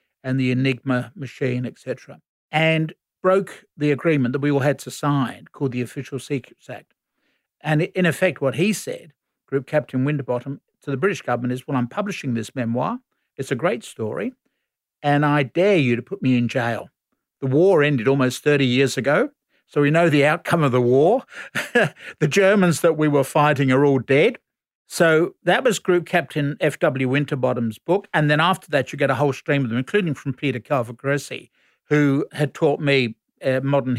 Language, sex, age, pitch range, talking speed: English, male, 60-79, 130-150 Hz, 185 wpm